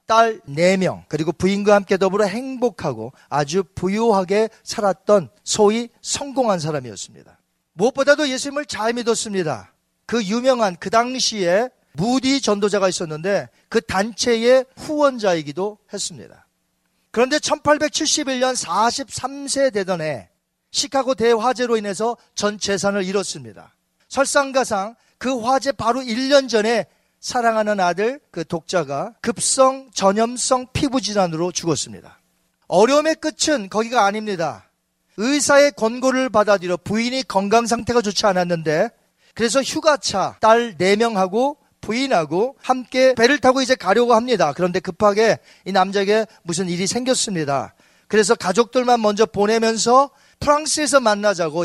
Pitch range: 185-255 Hz